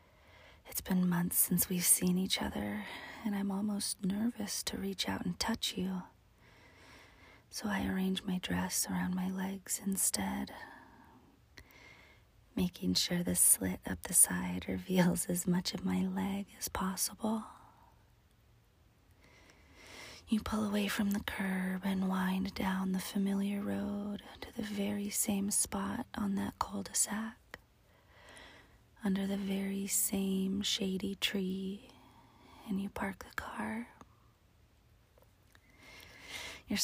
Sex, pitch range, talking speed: female, 180-215 Hz, 120 wpm